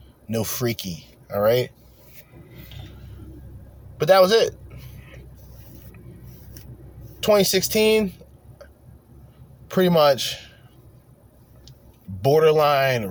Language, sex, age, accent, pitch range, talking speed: English, male, 20-39, American, 115-135 Hz, 55 wpm